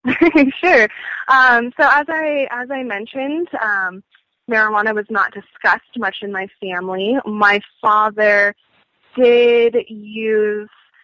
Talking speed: 115 wpm